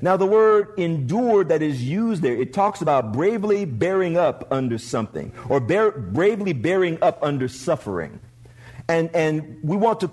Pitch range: 130-195 Hz